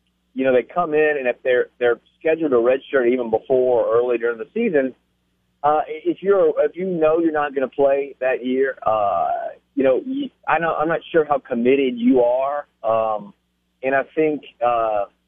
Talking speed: 195 wpm